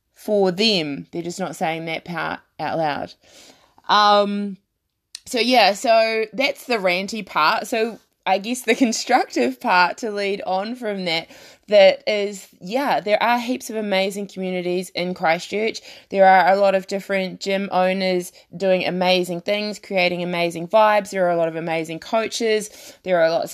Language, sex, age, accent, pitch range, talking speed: English, female, 20-39, Australian, 180-210 Hz, 165 wpm